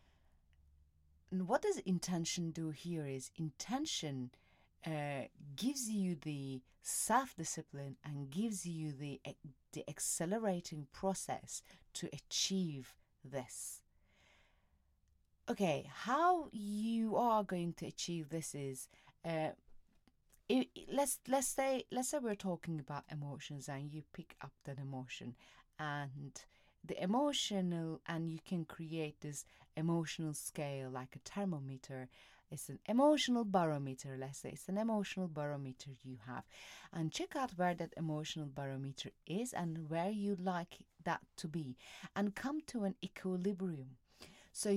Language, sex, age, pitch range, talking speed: English, female, 40-59, 135-190 Hz, 125 wpm